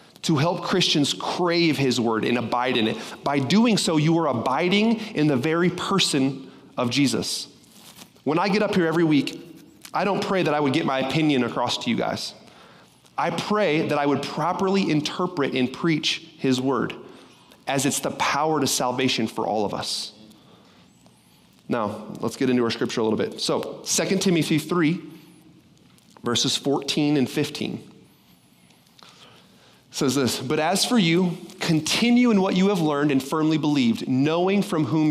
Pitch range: 130-175 Hz